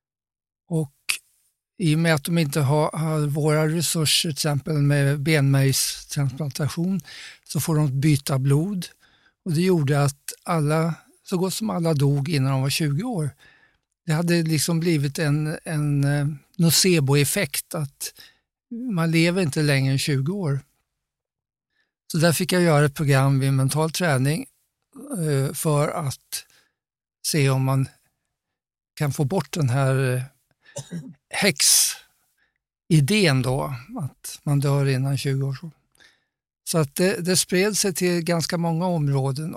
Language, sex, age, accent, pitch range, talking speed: Swedish, male, 50-69, native, 140-170 Hz, 140 wpm